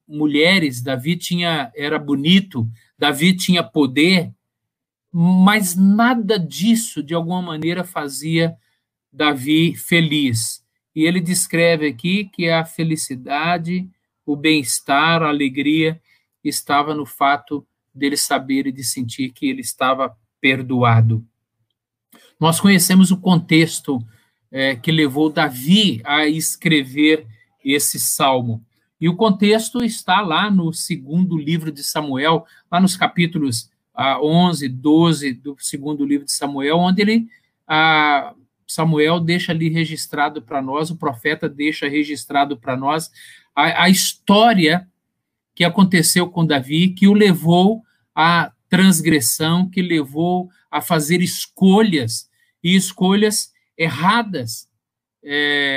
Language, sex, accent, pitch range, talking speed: Portuguese, male, Brazilian, 140-180 Hz, 115 wpm